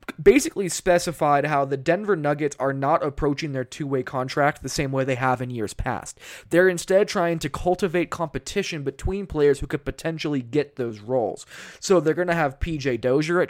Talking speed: 185 wpm